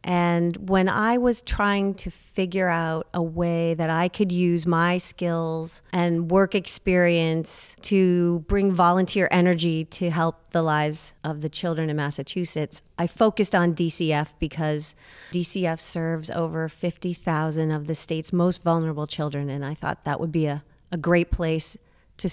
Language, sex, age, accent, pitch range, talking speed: English, female, 40-59, American, 160-185 Hz, 155 wpm